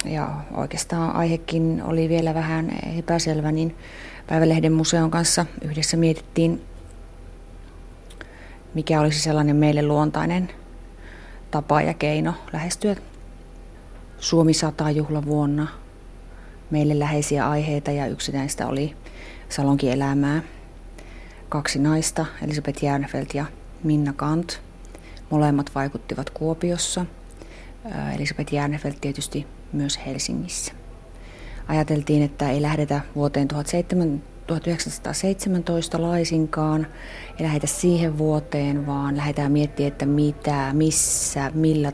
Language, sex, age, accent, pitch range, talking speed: Finnish, female, 30-49, native, 135-160 Hz, 95 wpm